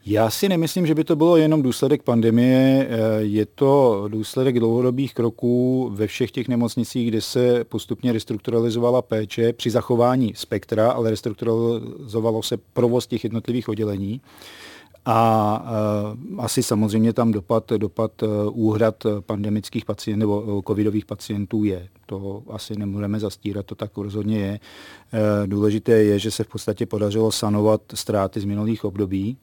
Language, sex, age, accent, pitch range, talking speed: Czech, male, 40-59, native, 105-115 Hz, 135 wpm